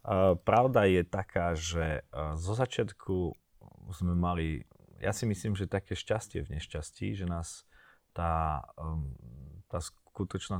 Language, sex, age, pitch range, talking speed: Slovak, male, 30-49, 80-100 Hz, 135 wpm